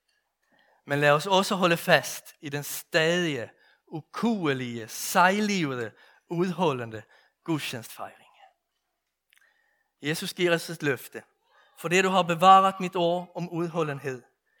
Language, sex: Danish, male